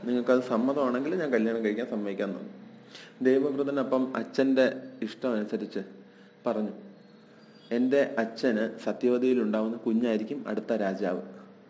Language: Malayalam